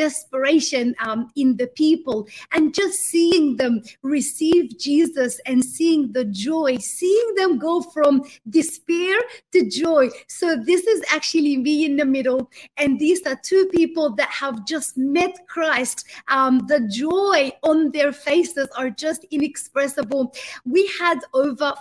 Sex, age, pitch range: female, 30-49, 265-330 Hz